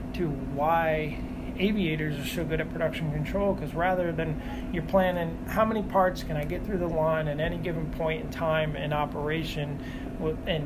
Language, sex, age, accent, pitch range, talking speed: English, male, 30-49, American, 150-175 Hz, 180 wpm